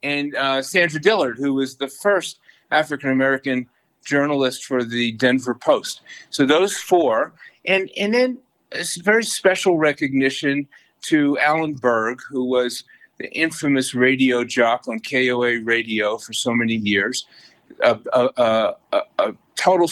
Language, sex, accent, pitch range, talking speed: English, male, American, 110-145 Hz, 135 wpm